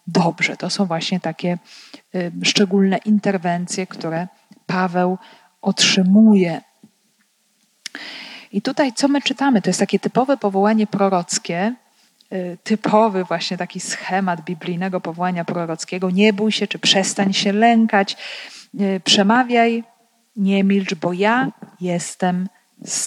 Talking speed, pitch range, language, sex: 110 wpm, 185-225 Hz, Polish, female